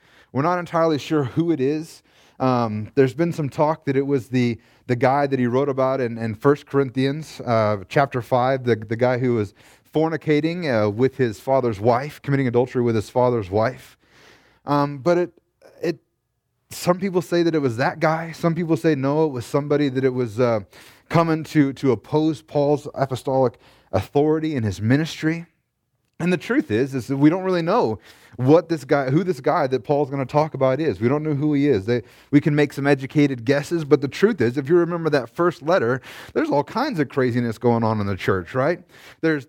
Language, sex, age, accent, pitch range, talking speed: English, male, 30-49, American, 125-160 Hz, 210 wpm